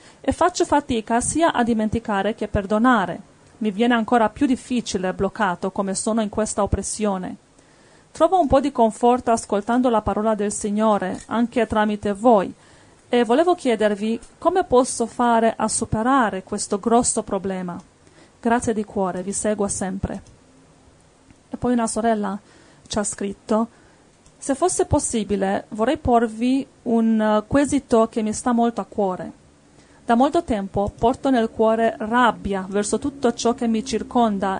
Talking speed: 145 wpm